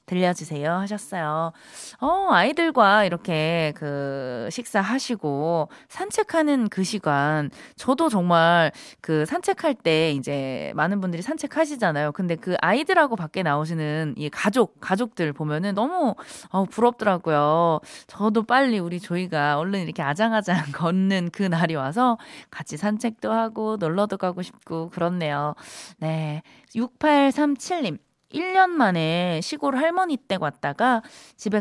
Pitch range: 160-235 Hz